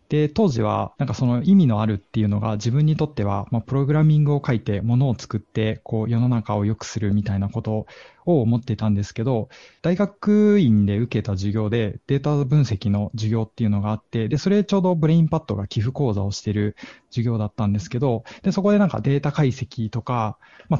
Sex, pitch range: male, 110-145 Hz